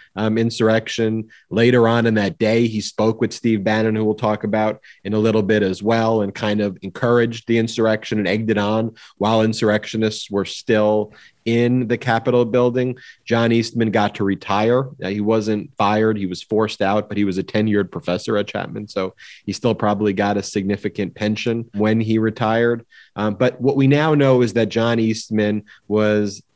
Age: 30-49